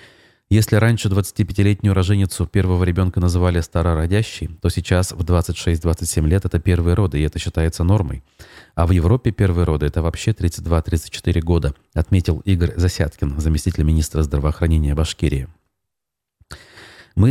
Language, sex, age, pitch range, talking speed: Russian, male, 30-49, 85-100 Hz, 130 wpm